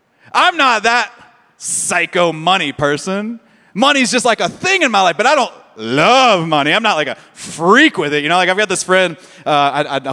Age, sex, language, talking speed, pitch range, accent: 30-49, male, English, 215 wpm, 145-195 Hz, American